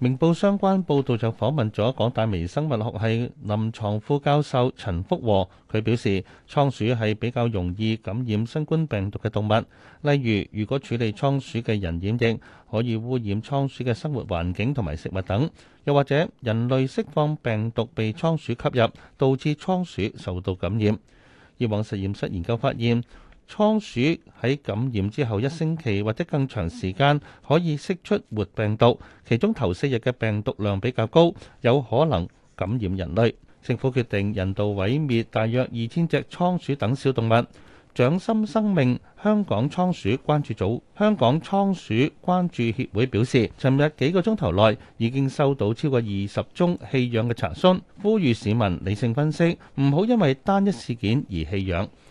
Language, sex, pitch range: Chinese, male, 105-145 Hz